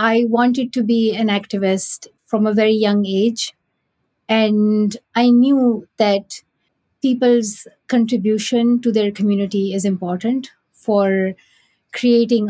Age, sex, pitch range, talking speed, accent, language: 50-69, female, 215-260 Hz, 115 wpm, Indian, English